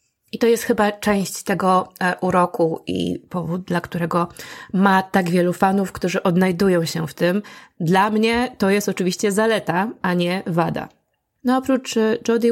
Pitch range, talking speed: 180-215 Hz, 160 wpm